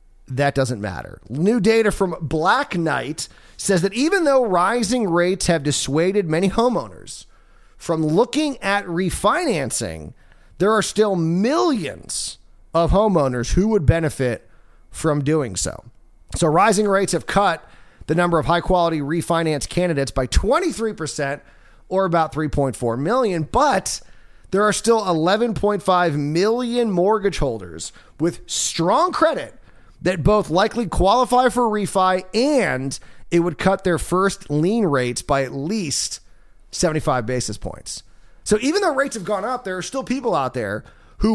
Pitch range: 140-210 Hz